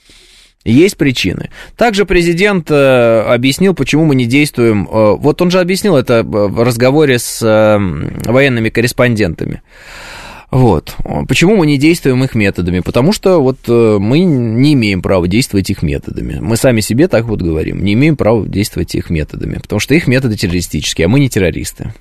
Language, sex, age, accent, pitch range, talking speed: Russian, male, 20-39, native, 105-155 Hz, 155 wpm